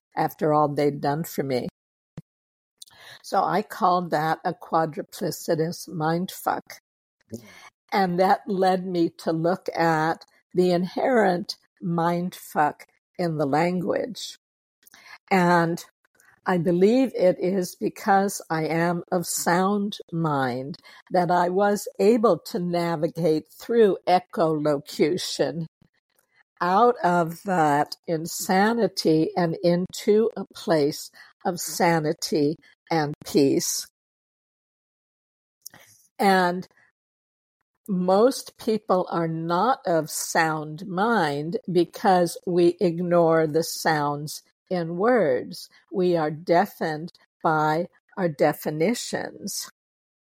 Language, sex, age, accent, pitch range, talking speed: English, female, 60-79, American, 160-190 Hz, 95 wpm